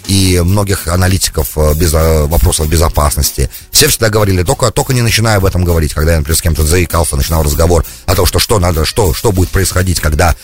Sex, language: male, English